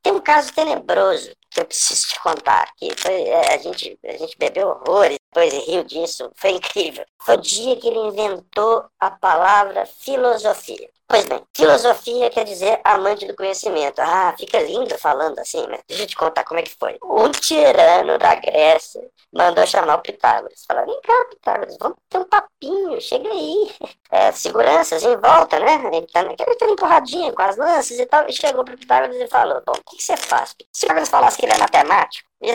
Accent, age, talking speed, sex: Brazilian, 20-39, 200 wpm, male